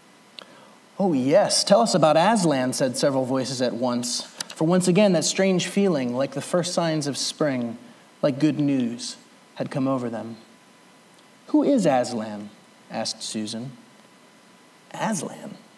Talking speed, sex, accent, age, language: 135 wpm, male, American, 30-49, English